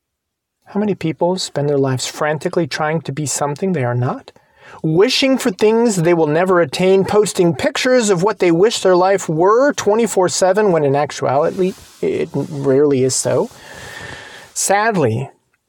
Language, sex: English, male